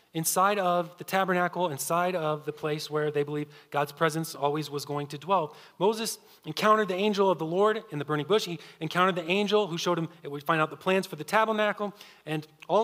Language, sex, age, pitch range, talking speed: English, male, 30-49, 150-190 Hz, 220 wpm